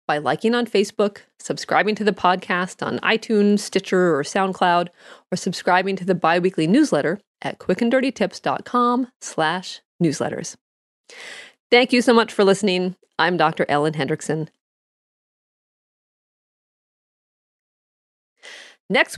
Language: English